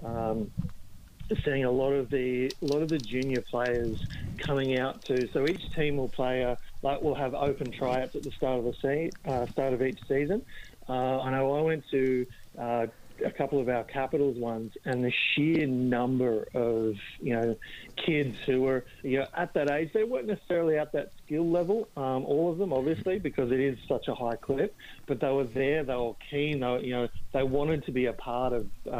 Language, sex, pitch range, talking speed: English, male, 120-140 Hz, 210 wpm